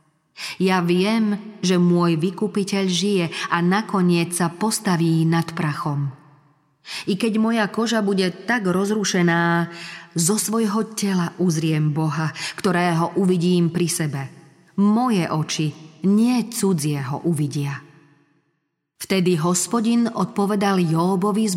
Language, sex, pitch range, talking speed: Slovak, female, 160-195 Hz, 110 wpm